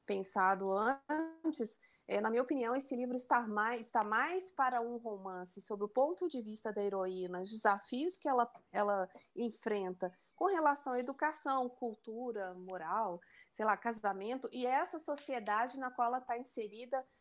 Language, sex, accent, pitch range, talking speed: Portuguese, female, Brazilian, 200-265 Hz, 150 wpm